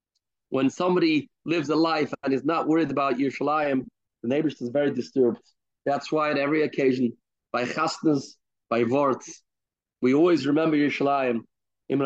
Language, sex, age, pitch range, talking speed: English, male, 30-49, 135-165 Hz, 150 wpm